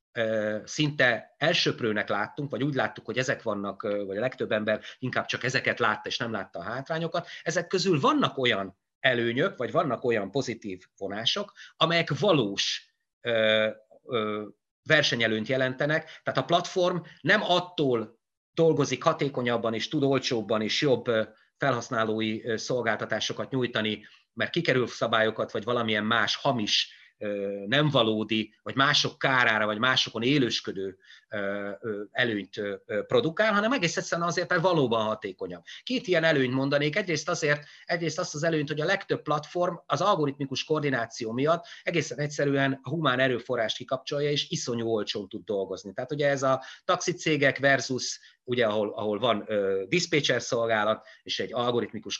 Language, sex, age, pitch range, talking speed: Hungarian, male, 30-49, 110-160 Hz, 135 wpm